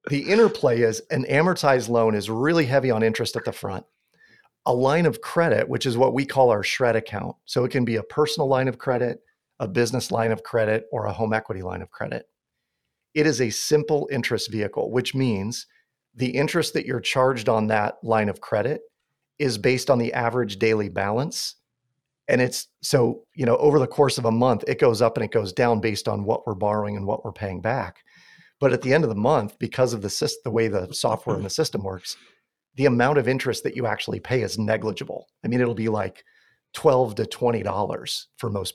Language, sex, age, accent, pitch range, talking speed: English, male, 40-59, American, 110-135 Hz, 215 wpm